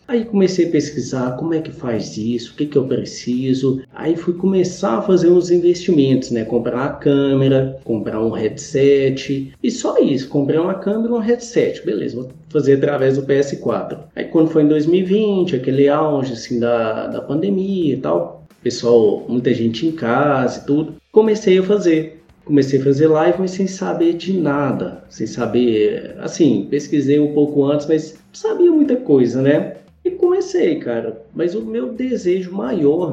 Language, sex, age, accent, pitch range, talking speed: Portuguese, male, 20-39, Brazilian, 125-180 Hz, 170 wpm